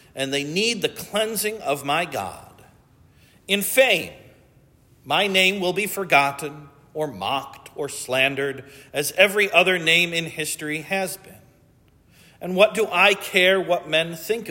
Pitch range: 135-180 Hz